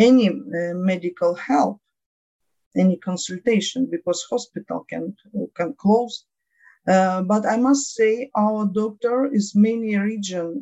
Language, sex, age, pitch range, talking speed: English, female, 50-69, 175-235 Hz, 120 wpm